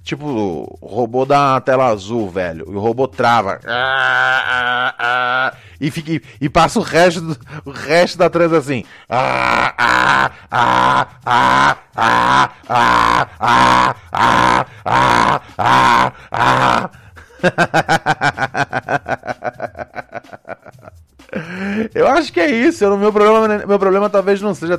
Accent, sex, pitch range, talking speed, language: Brazilian, male, 105-170 Hz, 75 wpm, Portuguese